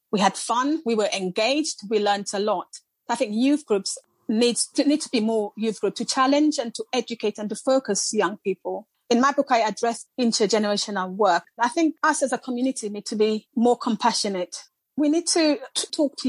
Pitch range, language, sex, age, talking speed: 195-250 Hz, English, female, 30-49, 205 wpm